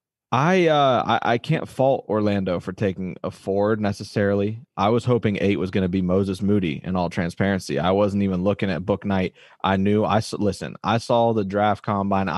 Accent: American